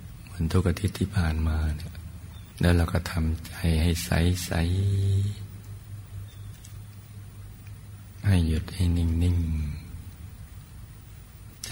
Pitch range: 80-100 Hz